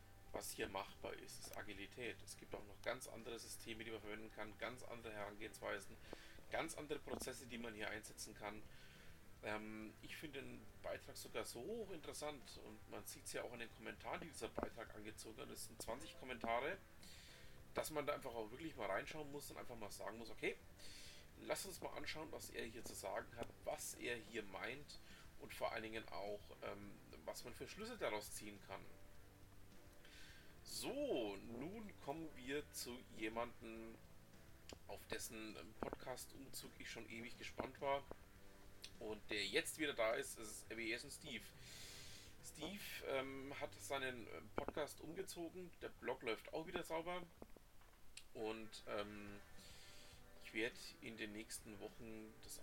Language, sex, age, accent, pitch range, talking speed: German, male, 40-59, German, 100-125 Hz, 165 wpm